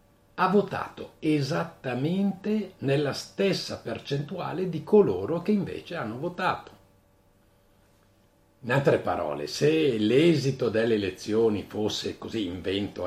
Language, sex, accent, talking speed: Italian, male, native, 100 wpm